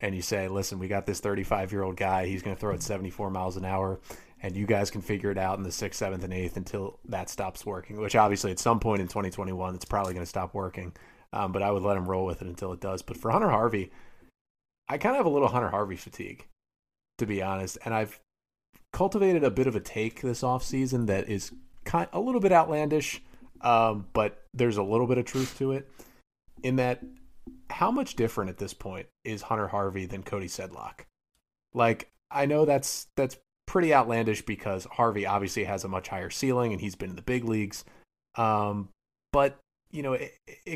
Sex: male